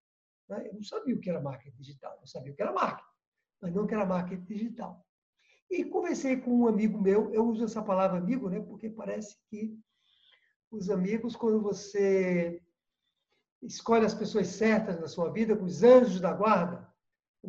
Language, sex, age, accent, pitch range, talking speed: Portuguese, male, 60-79, Brazilian, 190-235 Hz, 175 wpm